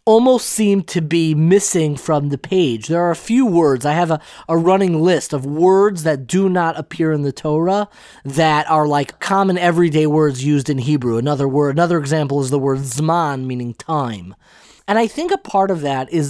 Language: English